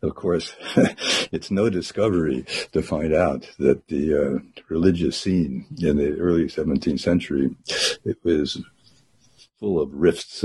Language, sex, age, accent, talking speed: English, male, 60-79, American, 130 wpm